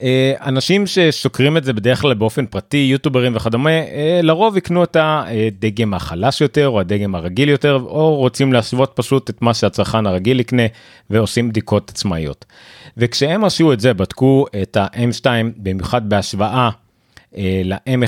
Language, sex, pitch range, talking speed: Hebrew, male, 105-140 Hz, 140 wpm